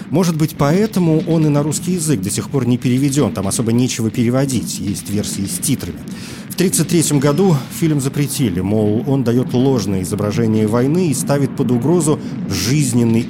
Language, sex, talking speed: Russian, male, 165 wpm